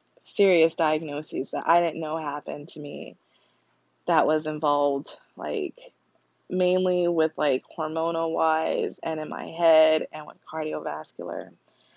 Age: 20-39